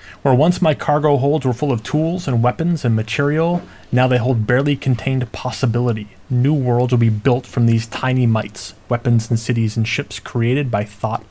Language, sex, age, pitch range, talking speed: English, male, 30-49, 105-125 Hz, 190 wpm